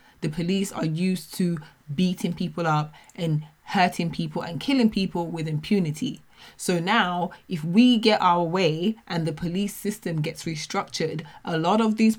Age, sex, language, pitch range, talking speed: 20-39, female, English, 155-195 Hz, 160 wpm